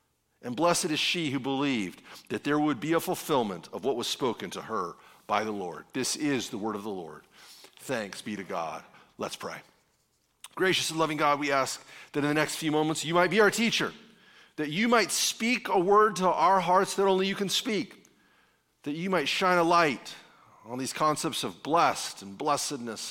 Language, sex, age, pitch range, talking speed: English, male, 40-59, 145-215 Hz, 205 wpm